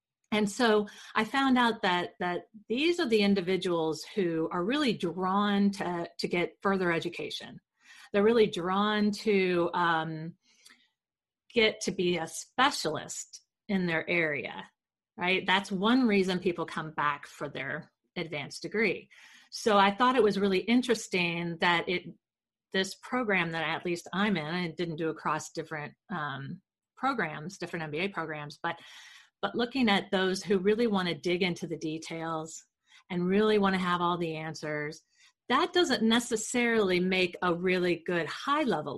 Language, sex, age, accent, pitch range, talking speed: English, female, 40-59, American, 165-210 Hz, 155 wpm